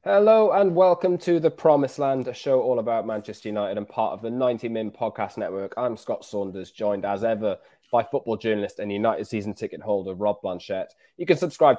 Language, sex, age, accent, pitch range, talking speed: English, male, 20-39, British, 100-135 Hz, 205 wpm